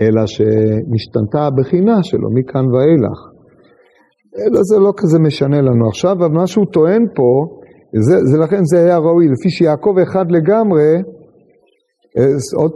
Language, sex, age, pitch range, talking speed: Hebrew, male, 40-59, 130-190 Hz, 145 wpm